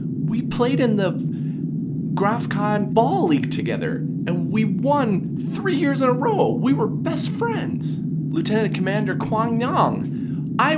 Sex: male